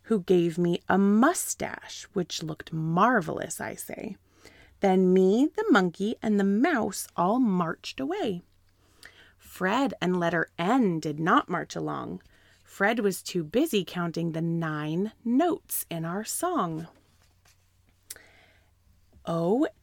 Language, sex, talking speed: English, female, 120 wpm